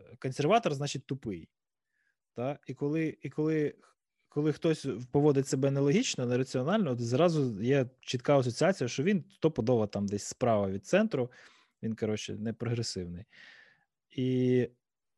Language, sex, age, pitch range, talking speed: Ukrainian, male, 20-39, 115-155 Hz, 125 wpm